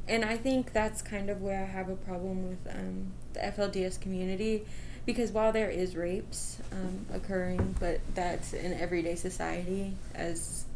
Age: 20-39